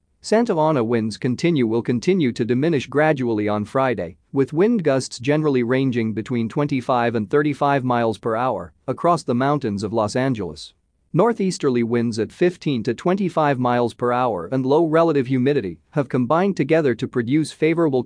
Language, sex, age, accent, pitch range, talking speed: English, male, 40-59, American, 110-140 Hz, 160 wpm